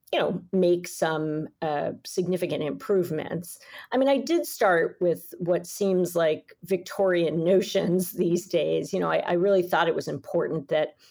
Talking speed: 160 wpm